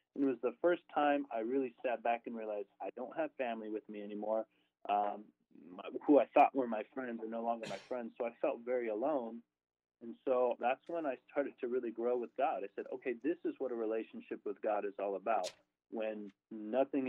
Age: 30-49